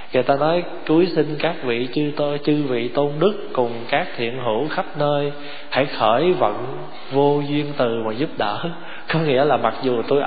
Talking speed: 200 wpm